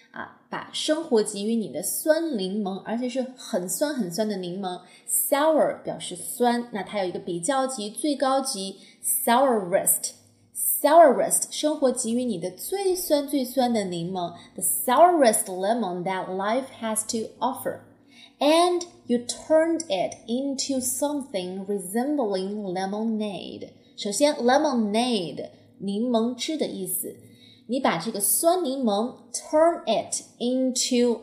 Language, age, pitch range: Chinese, 20-39, 195-265 Hz